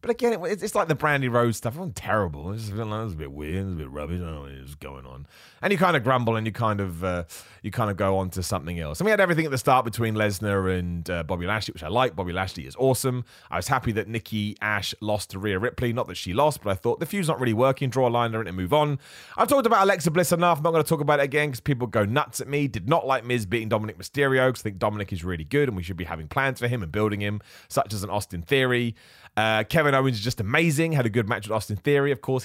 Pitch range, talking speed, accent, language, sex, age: 95-140 Hz, 290 wpm, British, English, male, 30-49